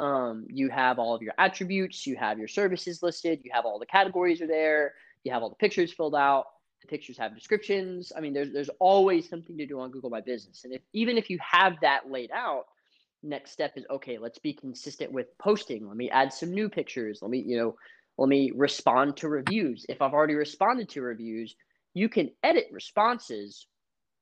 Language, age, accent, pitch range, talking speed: English, 20-39, American, 130-180 Hz, 210 wpm